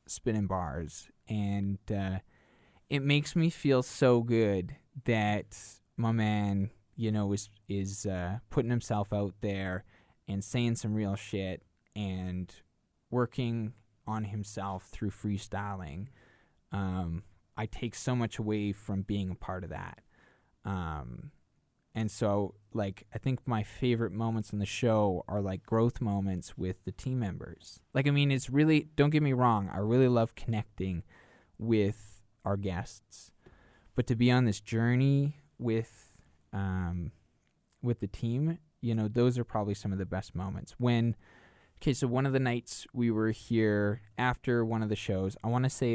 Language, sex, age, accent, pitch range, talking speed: English, male, 10-29, American, 95-120 Hz, 155 wpm